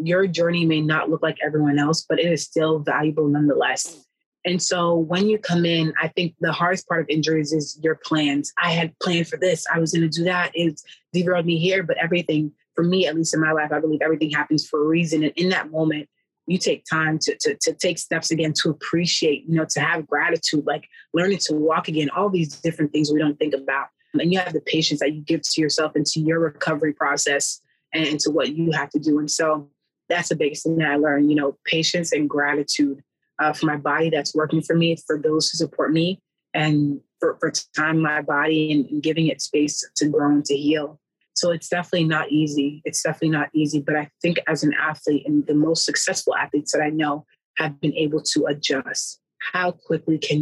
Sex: female